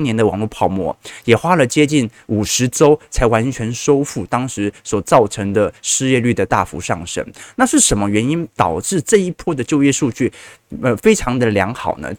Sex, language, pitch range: male, Chinese, 110-160 Hz